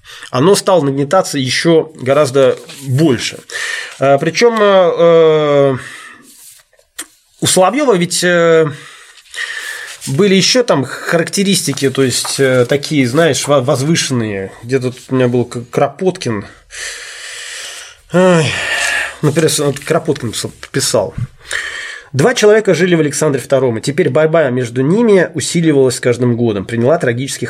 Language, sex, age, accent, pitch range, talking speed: Russian, male, 20-39, native, 130-175 Hz, 100 wpm